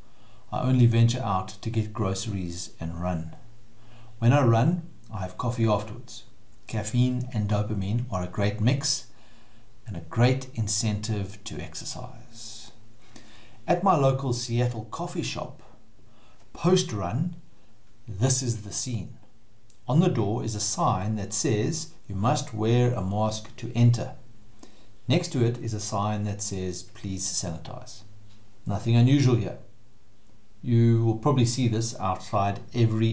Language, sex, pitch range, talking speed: English, male, 105-130 Hz, 140 wpm